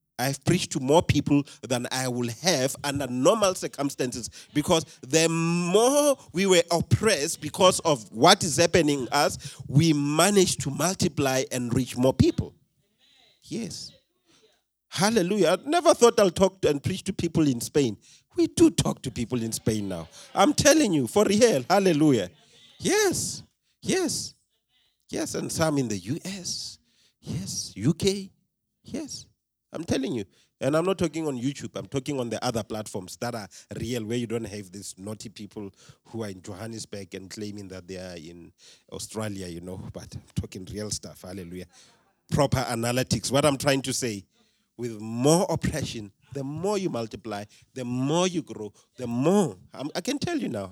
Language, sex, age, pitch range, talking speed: English, male, 40-59, 110-165 Hz, 165 wpm